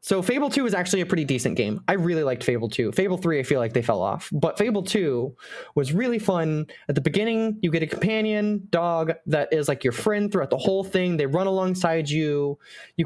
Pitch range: 145-190 Hz